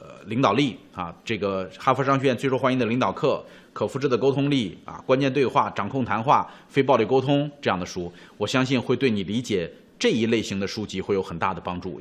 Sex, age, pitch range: male, 30-49, 125-205 Hz